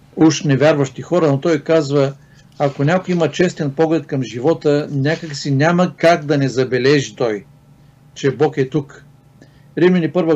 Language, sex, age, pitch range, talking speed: Bulgarian, male, 50-69, 135-165 Hz, 150 wpm